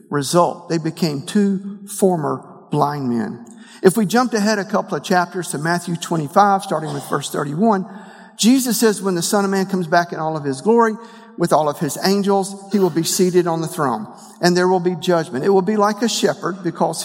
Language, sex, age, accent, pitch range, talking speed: English, male, 50-69, American, 170-210 Hz, 210 wpm